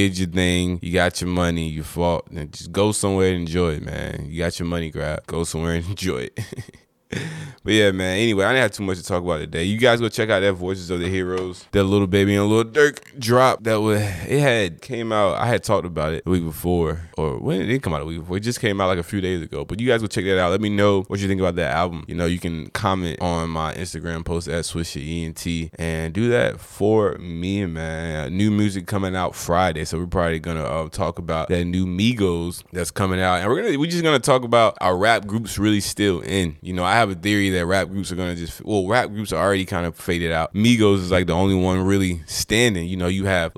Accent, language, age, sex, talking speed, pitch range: American, English, 20-39, male, 260 wpm, 85-100 Hz